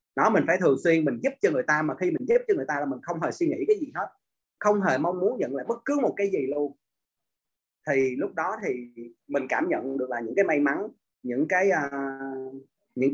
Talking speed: 250 wpm